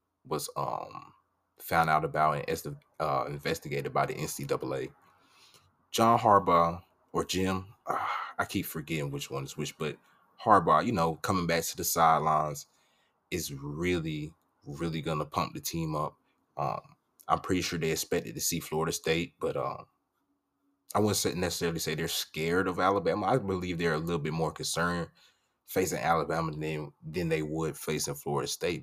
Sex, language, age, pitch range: male, English, 20-39, 75-95 Hz